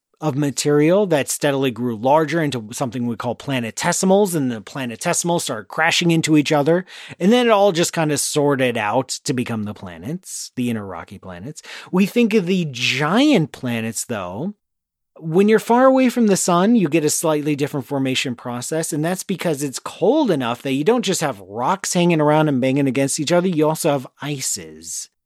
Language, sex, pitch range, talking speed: English, male, 125-175 Hz, 190 wpm